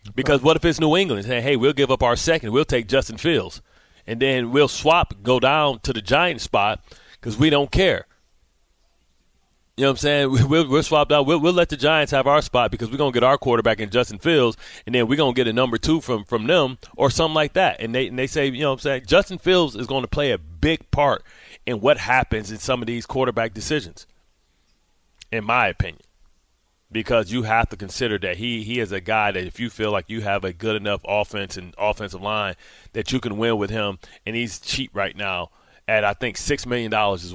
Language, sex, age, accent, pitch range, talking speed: English, male, 30-49, American, 105-130 Hz, 235 wpm